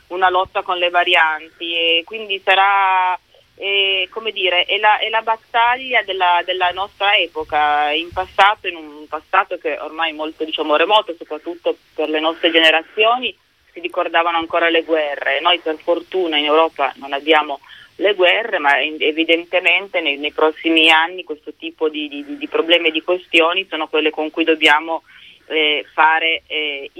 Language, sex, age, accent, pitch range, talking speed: Italian, female, 30-49, native, 155-185 Hz, 160 wpm